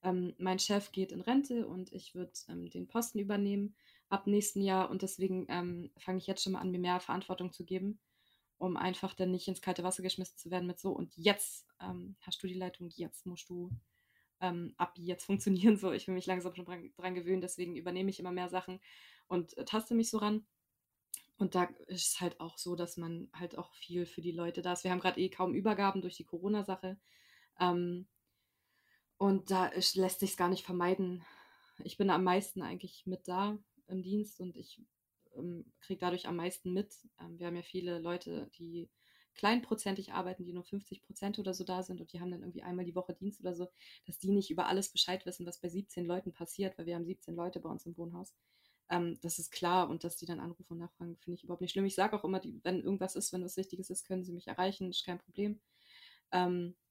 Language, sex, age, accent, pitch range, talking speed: German, female, 20-39, German, 175-190 Hz, 225 wpm